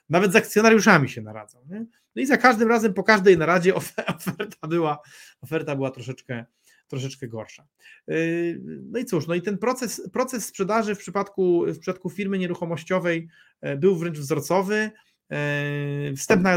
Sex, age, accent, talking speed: male, 30-49, native, 145 wpm